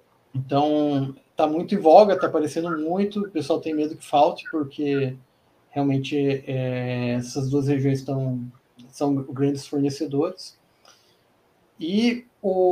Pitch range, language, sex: 160-195 Hz, Portuguese, male